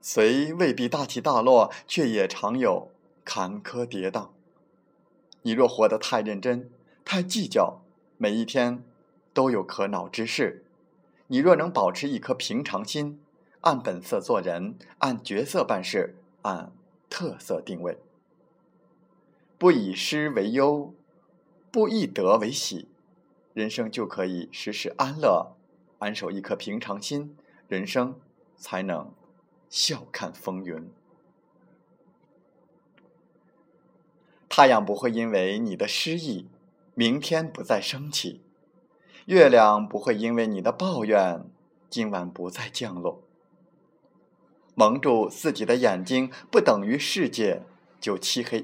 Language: Chinese